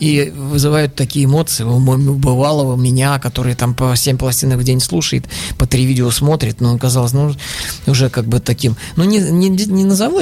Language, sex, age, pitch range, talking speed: Russian, male, 20-39, 115-145 Hz, 190 wpm